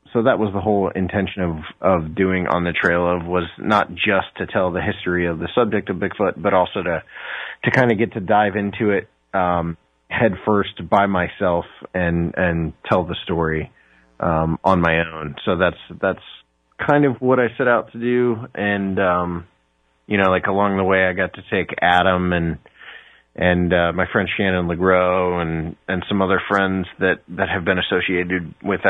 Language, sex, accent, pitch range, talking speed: English, male, American, 85-100 Hz, 190 wpm